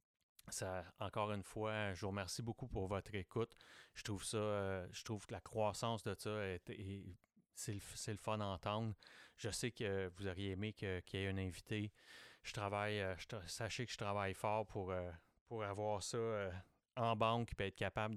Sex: male